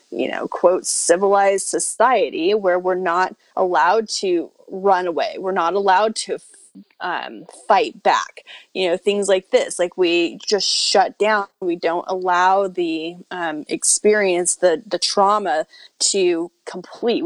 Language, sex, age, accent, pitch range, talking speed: English, female, 30-49, American, 175-215 Hz, 140 wpm